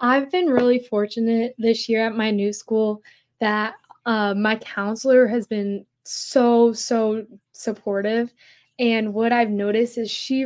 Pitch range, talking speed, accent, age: 190-225 Hz, 145 wpm, American, 10-29